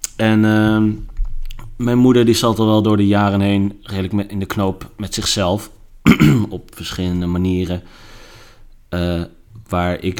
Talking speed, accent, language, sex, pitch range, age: 140 wpm, Dutch, Dutch, male, 90-110 Hz, 30-49